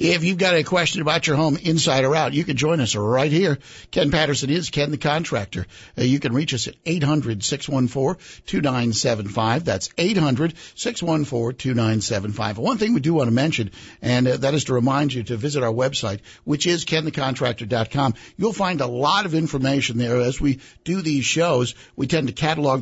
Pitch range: 120-160 Hz